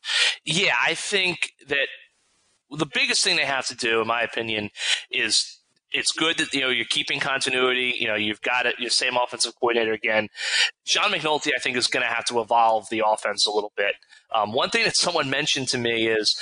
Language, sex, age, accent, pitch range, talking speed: English, male, 30-49, American, 125-175 Hz, 210 wpm